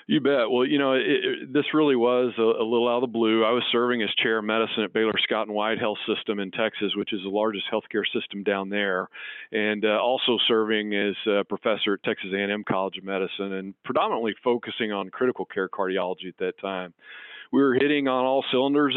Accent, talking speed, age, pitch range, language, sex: American, 220 wpm, 50-69, 105-120 Hz, English, male